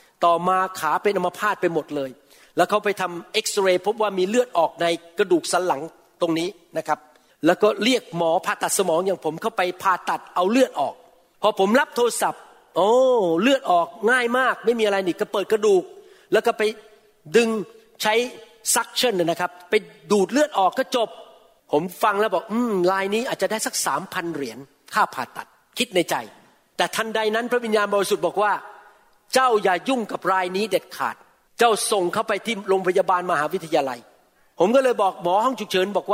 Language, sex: Thai, male